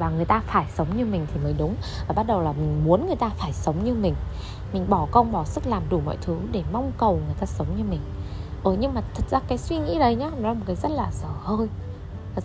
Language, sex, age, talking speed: Vietnamese, female, 20-39, 280 wpm